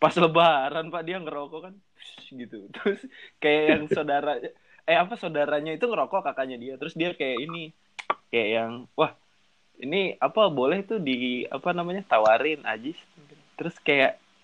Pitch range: 110-155 Hz